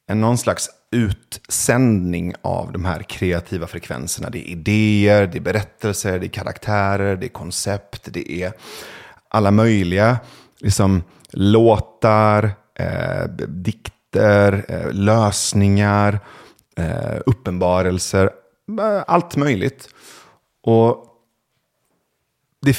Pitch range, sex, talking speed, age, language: 95-120 Hz, male, 90 wpm, 30-49, Swedish